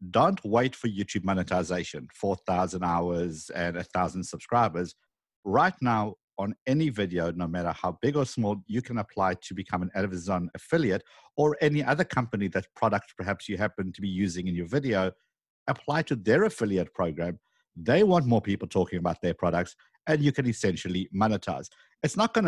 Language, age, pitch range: English, 50-69, 95-140 Hz